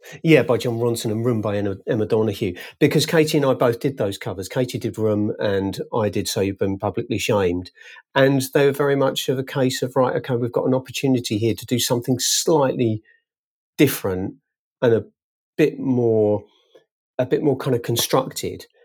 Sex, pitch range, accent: male, 115-150 Hz, British